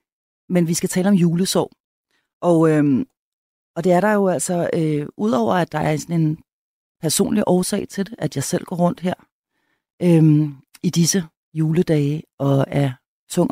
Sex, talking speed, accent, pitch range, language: female, 170 wpm, native, 145-185 Hz, Danish